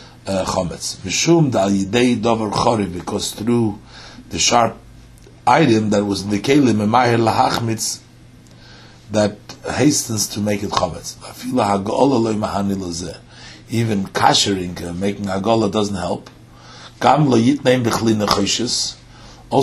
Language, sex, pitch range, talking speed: English, male, 100-120 Hz, 75 wpm